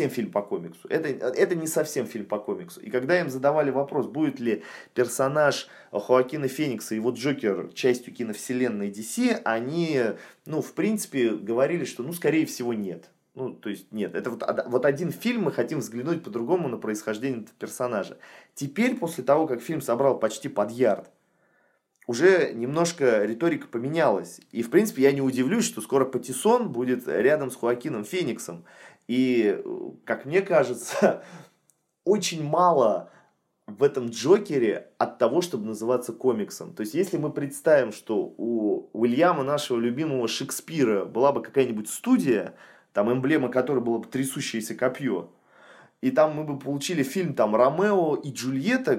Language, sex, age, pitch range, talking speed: Russian, male, 30-49, 120-165 Hz, 155 wpm